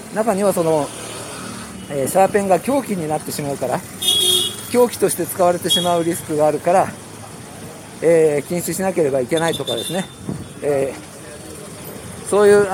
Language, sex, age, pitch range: Japanese, male, 50-69, 165-210 Hz